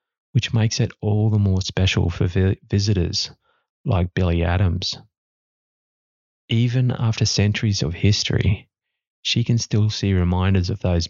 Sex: male